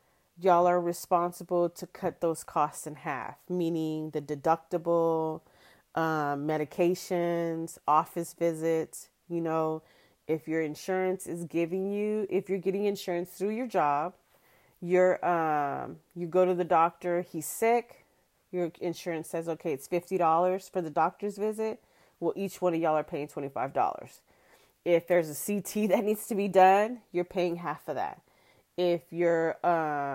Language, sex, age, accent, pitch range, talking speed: English, female, 30-49, American, 160-185 Hz, 150 wpm